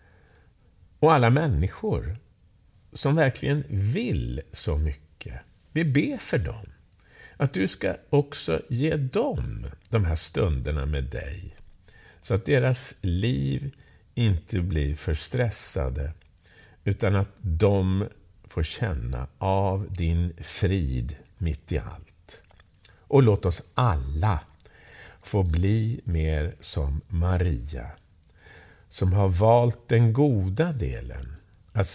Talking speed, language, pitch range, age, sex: 110 wpm, Swedish, 85-110 Hz, 50-69, male